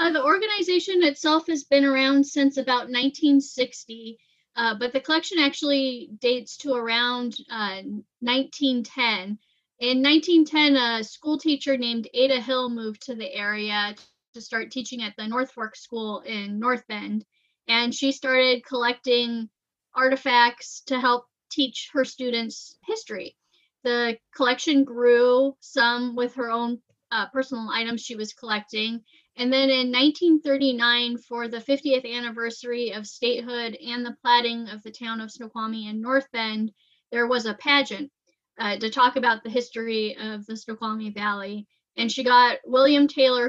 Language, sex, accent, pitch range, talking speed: English, female, American, 225-265 Hz, 145 wpm